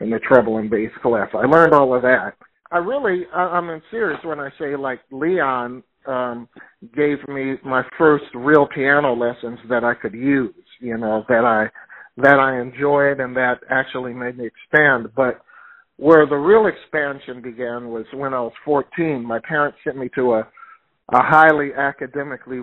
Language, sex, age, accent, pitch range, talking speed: English, male, 50-69, American, 125-150 Hz, 180 wpm